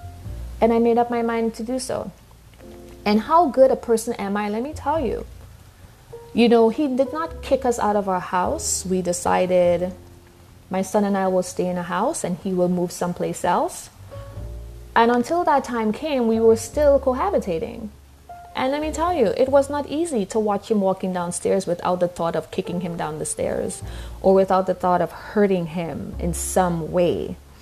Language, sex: English, female